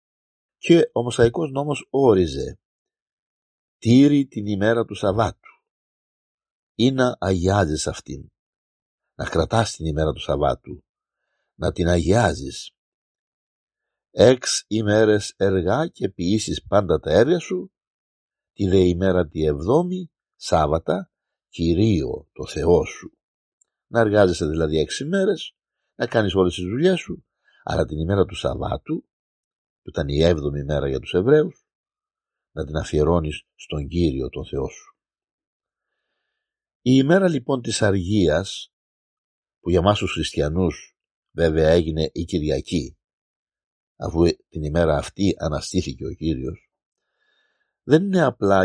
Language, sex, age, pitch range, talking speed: Greek, male, 60-79, 80-115 Hz, 120 wpm